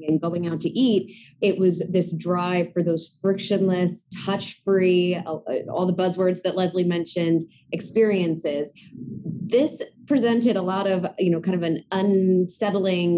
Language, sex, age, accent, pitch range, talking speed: English, female, 20-39, American, 160-185 Hz, 140 wpm